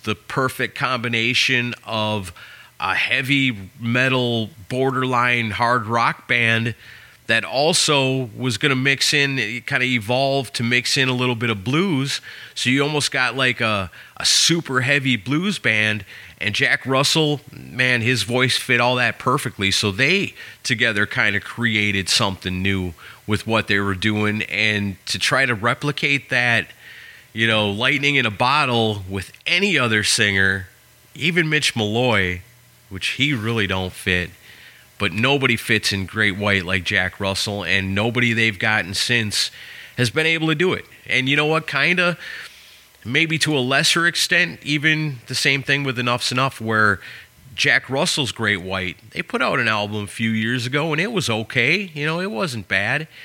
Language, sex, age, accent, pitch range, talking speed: English, male, 30-49, American, 105-140 Hz, 165 wpm